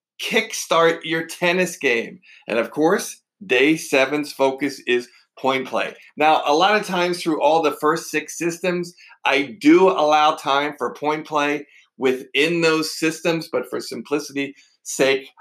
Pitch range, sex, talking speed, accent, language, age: 130-165 Hz, male, 150 wpm, American, English, 50-69